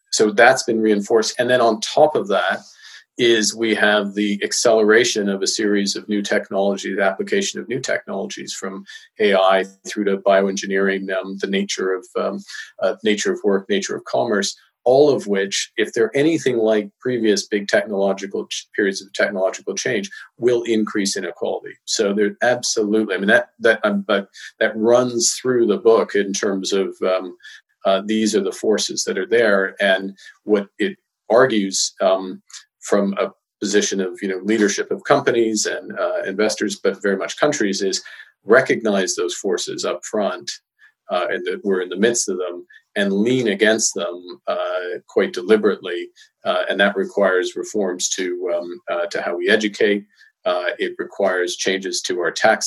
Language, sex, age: English, male, 40-59